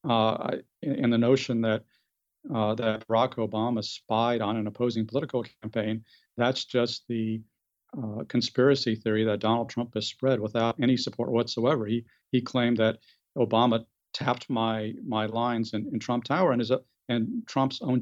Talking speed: 165 wpm